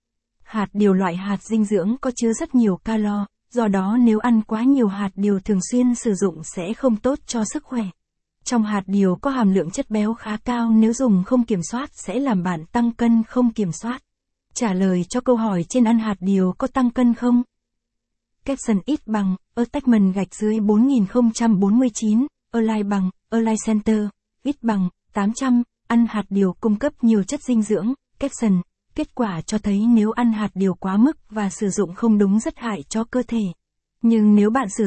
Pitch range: 200-240 Hz